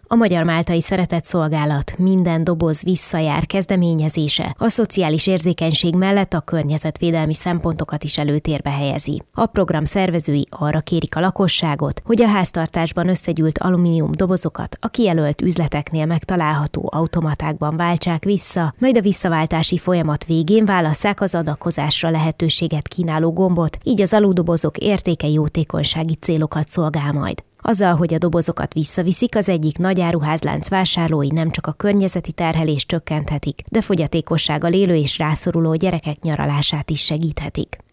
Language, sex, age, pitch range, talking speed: Hungarian, female, 20-39, 155-180 Hz, 130 wpm